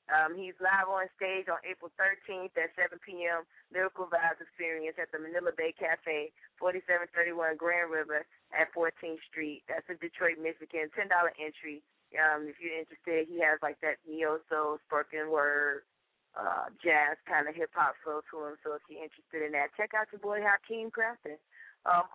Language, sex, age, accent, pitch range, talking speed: English, female, 20-39, American, 160-185 Hz, 170 wpm